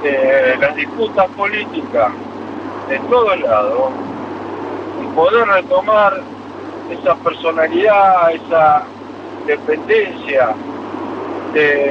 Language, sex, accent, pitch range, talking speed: Spanish, male, Argentinian, 200-335 Hz, 80 wpm